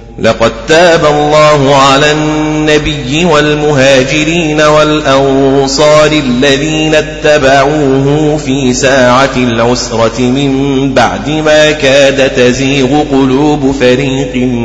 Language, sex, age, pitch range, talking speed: Arabic, male, 30-49, 130-155 Hz, 80 wpm